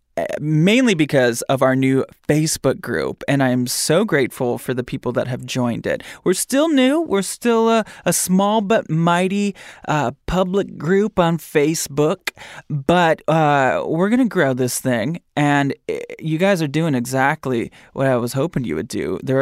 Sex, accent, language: male, American, English